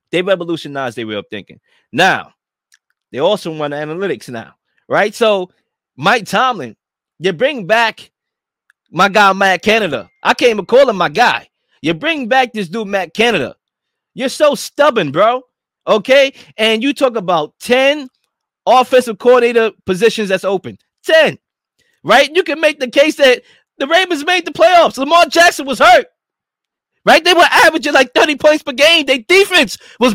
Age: 20-39